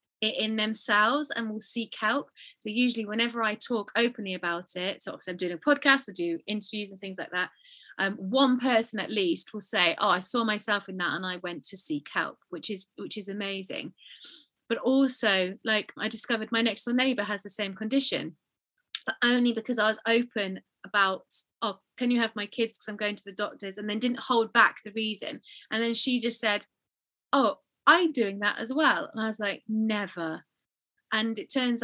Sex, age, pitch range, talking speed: female, 30-49, 195-235 Hz, 205 wpm